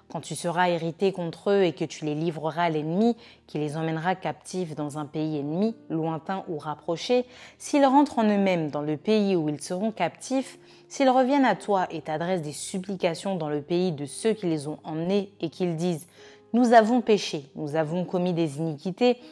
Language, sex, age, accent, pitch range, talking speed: French, female, 20-39, French, 160-215 Hz, 195 wpm